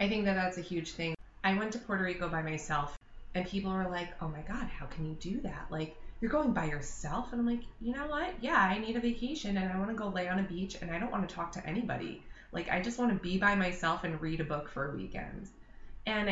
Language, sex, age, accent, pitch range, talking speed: English, female, 20-39, American, 160-200 Hz, 275 wpm